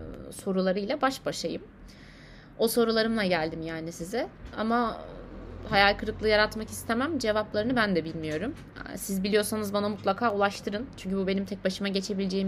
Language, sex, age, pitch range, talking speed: Turkish, female, 30-49, 185-225 Hz, 135 wpm